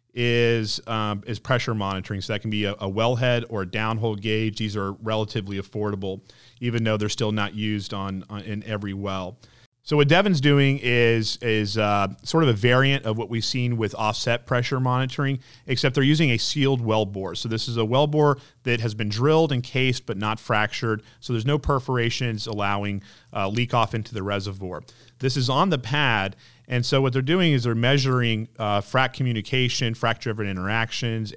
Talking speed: 195 wpm